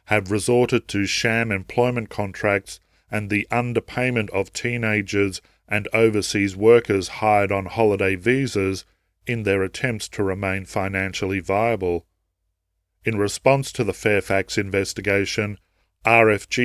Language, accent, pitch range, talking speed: English, Australian, 95-115 Hz, 115 wpm